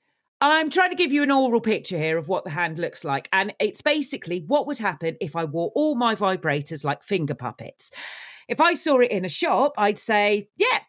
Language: English